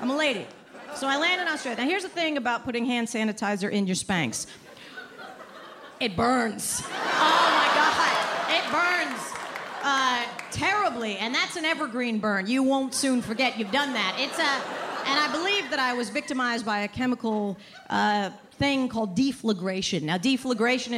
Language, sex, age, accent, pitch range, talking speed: English, female, 40-59, American, 215-270 Hz, 165 wpm